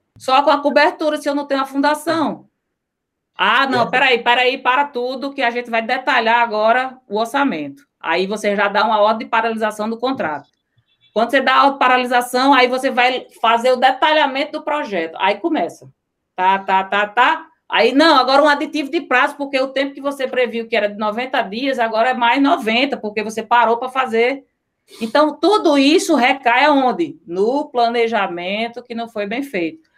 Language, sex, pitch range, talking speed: Portuguese, female, 215-285 Hz, 190 wpm